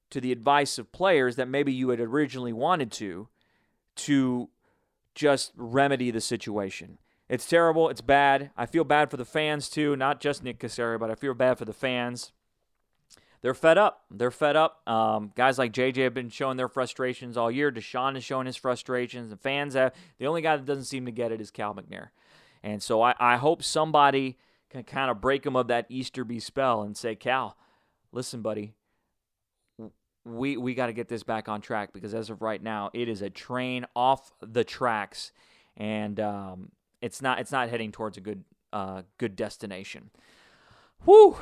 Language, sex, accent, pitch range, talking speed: English, male, American, 115-145 Hz, 190 wpm